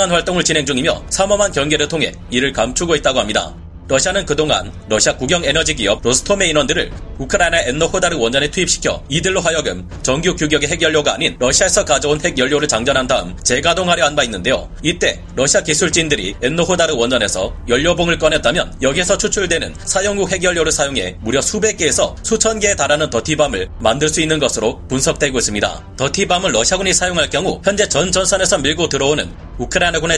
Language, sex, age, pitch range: Korean, male, 30-49, 135-180 Hz